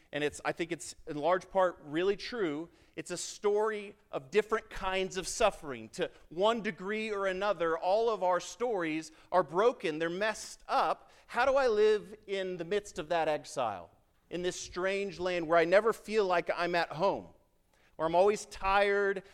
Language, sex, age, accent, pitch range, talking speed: English, male, 40-59, American, 115-190 Hz, 180 wpm